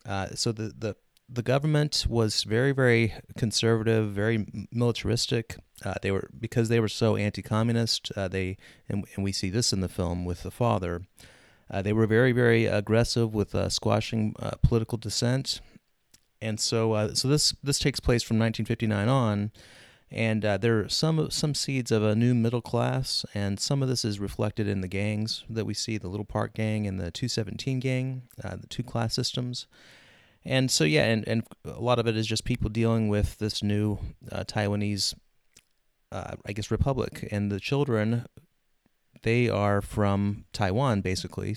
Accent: American